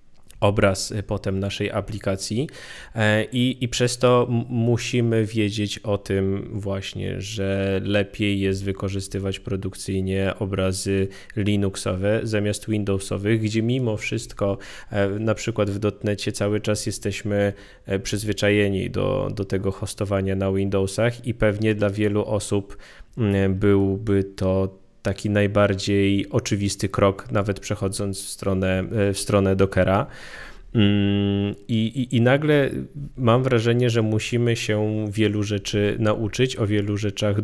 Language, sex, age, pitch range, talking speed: Polish, male, 20-39, 100-110 Hz, 115 wpm